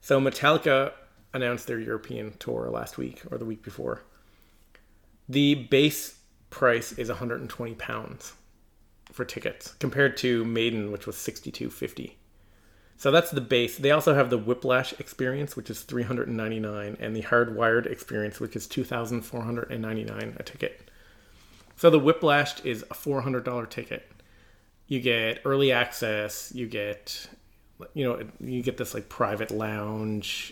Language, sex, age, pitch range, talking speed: English, male, 30-49, 105-125 Hz, 135 wpm